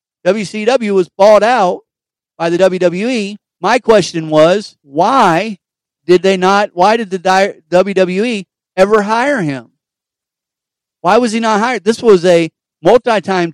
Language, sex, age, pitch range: English, male, 50-69, 160-210 Hz